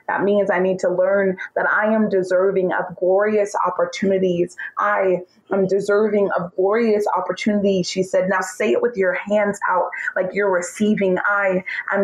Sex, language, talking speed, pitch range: female, English, 165 wpm, 185-215 Hz